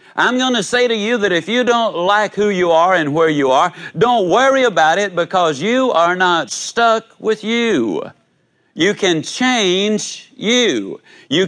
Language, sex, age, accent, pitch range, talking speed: English, male, 60-79, American, 160-230 Hz, 180 wpm